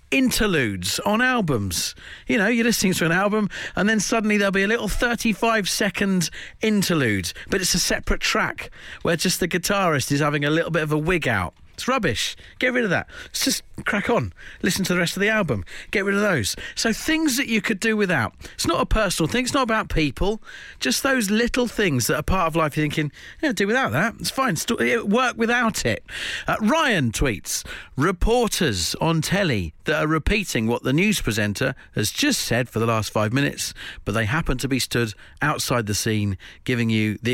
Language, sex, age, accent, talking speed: English, male, 40-59, British, 205 wpm